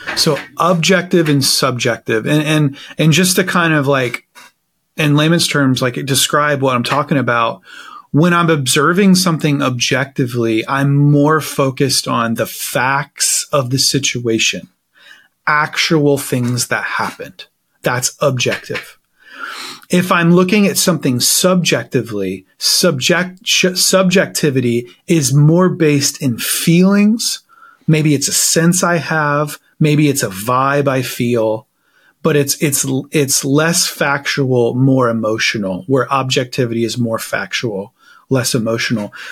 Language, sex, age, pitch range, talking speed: English, male, 30-49, 130-175 Hz, 125 wpm